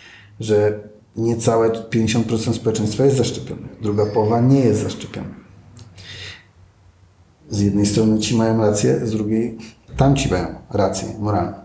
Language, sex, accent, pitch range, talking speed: Polish, male, native, 110-130 Hz, 120 wpm